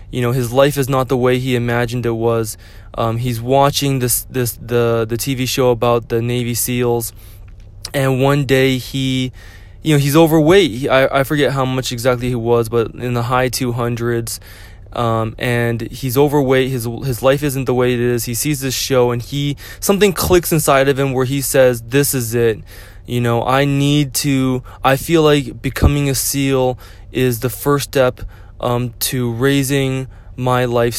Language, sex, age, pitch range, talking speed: English, male, 20-39, 115-135 Hz, 185 wpm